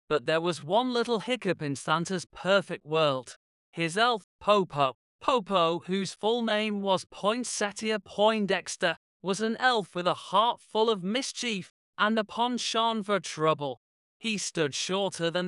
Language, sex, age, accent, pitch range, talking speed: English, male, 30-49, British, 165-220 Hz, 145 wpm